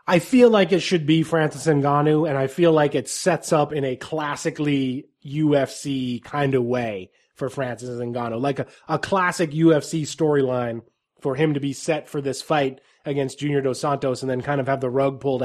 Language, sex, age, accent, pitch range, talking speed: English, male, 20-39, American, 135-165 Hz, 200 wpm